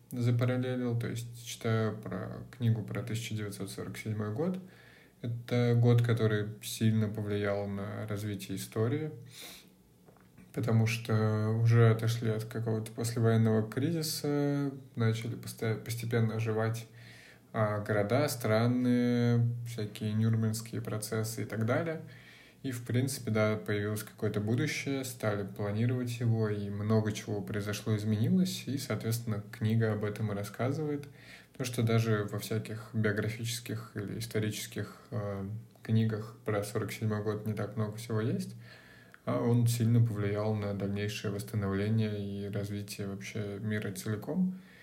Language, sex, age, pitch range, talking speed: Russian, male, 20-39, 105-120 Hz, 120 wpm